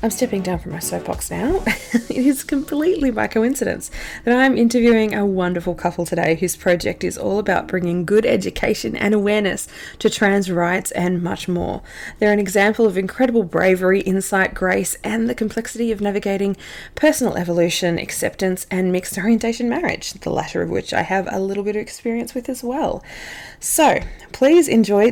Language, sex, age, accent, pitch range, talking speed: English, female, 20-39, Australian, 170-225 Hz, 170 wpm